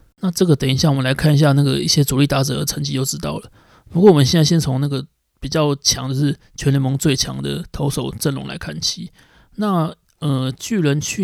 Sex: male